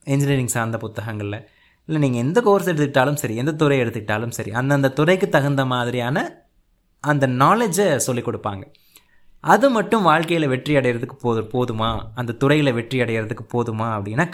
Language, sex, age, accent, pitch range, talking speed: Tamil, male, 20-39, native, 120-180 Hz, 140 wpm